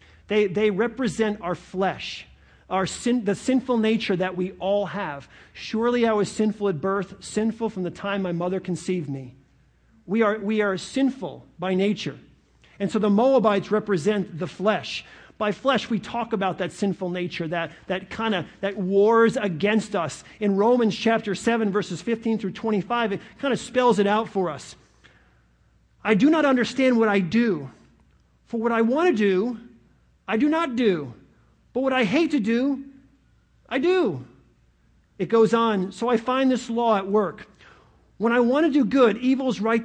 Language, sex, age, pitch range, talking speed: English, male, 40-59, 185-230 Hz, 175 wpm